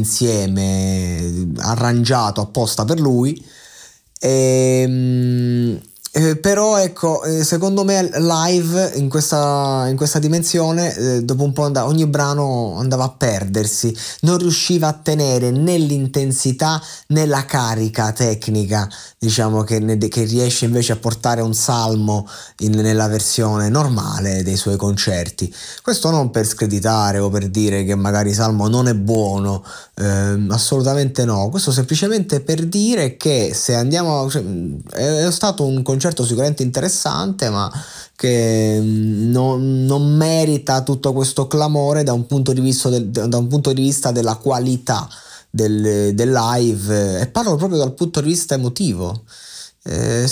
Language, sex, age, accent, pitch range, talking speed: Italian, male, 30-49, native, 110-150 Hz, 140 wpm